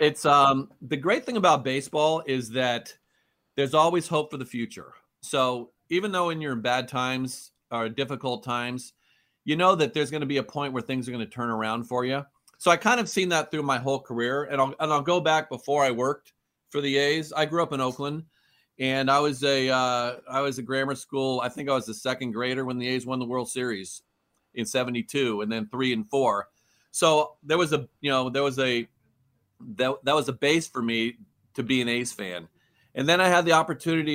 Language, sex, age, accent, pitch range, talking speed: English, male, 40-59, American, 120-145 Hz, 225 wpm